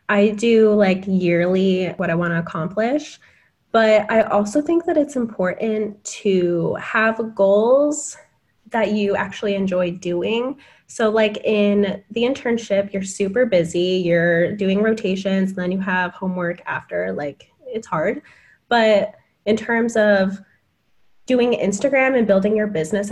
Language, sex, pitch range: English, female, 185-235 Hz